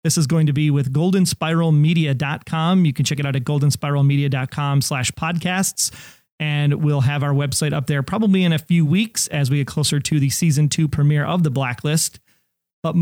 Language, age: English, 30-49